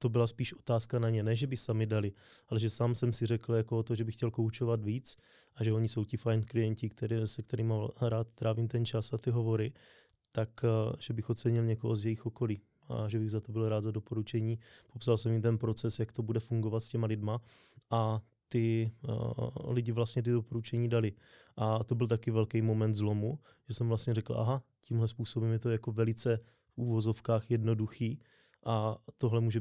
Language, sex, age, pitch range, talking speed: Czech, male, 20-39, 110-120 Hz, 210 wpm